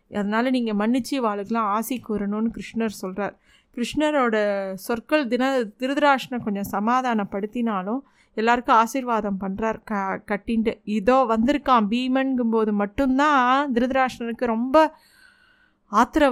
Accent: native